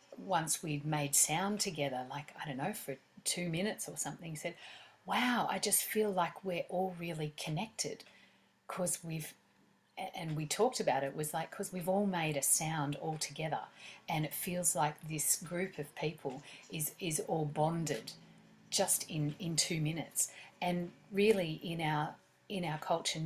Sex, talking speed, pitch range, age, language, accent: female, 170 wpm, 145-180 Hz, 40-59, English, Australian